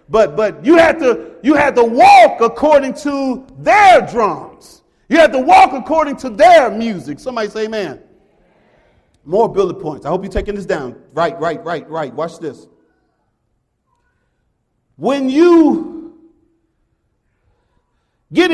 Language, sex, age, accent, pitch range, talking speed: English, male, 40-59, American, 175-245 Hz, 135 wpm